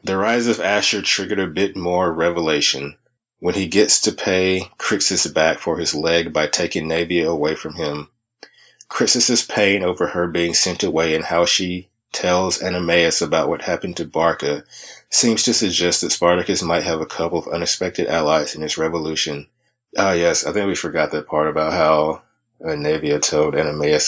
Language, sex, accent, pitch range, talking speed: English, male, American, 80-95 Hz, 175 wpm